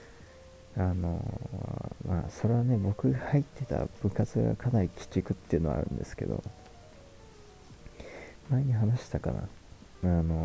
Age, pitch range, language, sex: 40-59, 90-115 Hz, Japanese, male